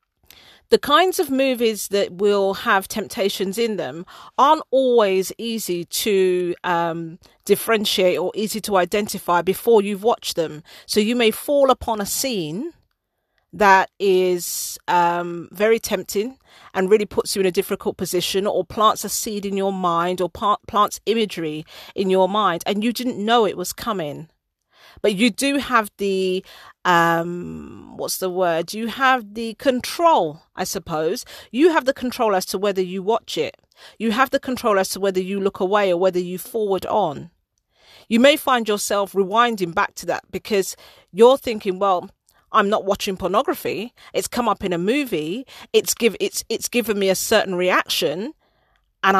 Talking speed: 165 wpm